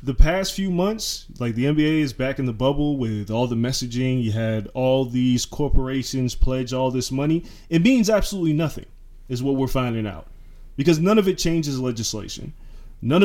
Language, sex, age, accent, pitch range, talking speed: English, male, 20-39, American, 120-155 Hz, 185 wpm